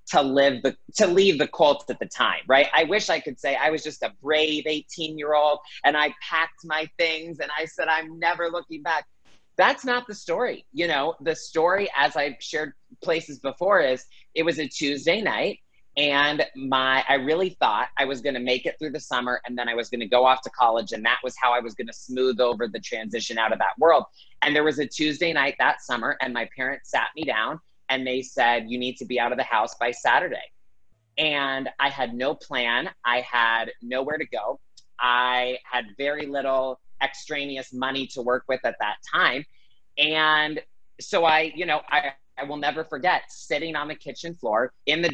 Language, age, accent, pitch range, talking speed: English, 30-49, American, 130-155 Hz, 210 wpm